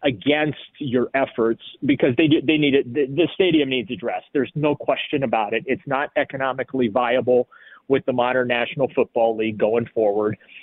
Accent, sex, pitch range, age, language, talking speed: American, male, 125-150 Hz, 30-49, English, 165 wpm